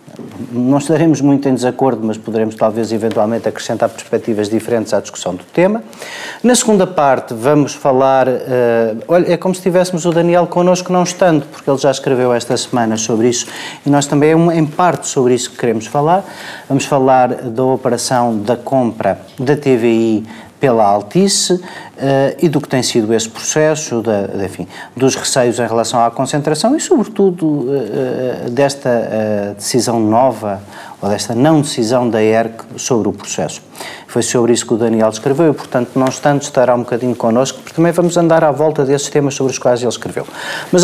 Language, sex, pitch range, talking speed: Portuguese, male, 110-145 Hz, 180 wpm